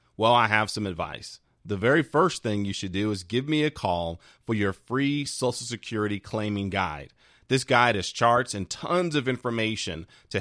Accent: American